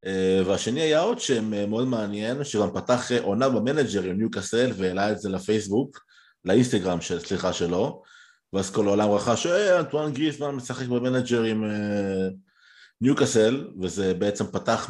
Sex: male